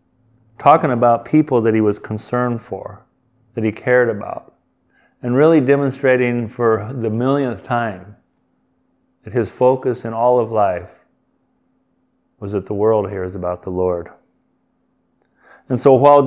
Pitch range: 115-140 Hz